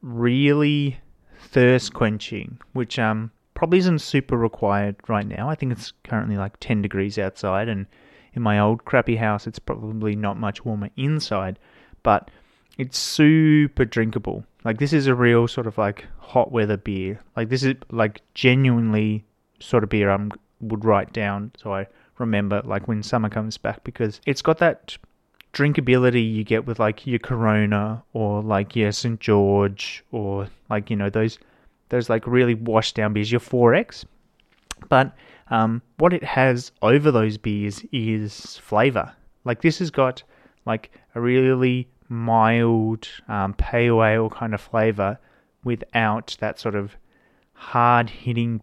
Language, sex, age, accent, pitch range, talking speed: English, male, 30-49, Australian, 105-125 Hz, 155 wpm